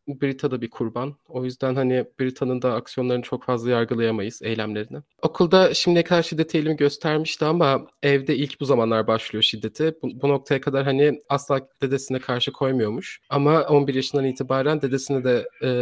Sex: male